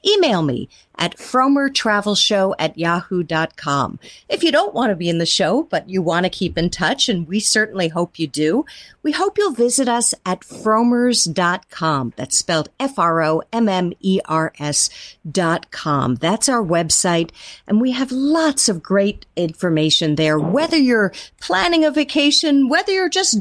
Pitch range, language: 165-255 Hz, English